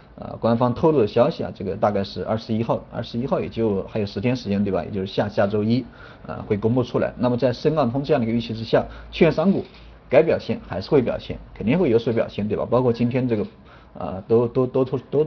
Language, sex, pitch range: Chinese, male, 105-135 Hz